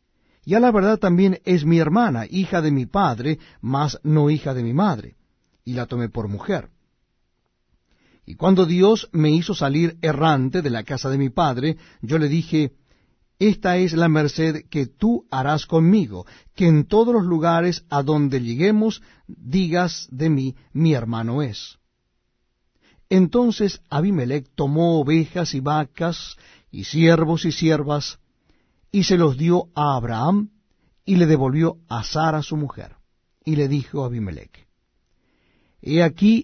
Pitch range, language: 135-180 Hz, Spanish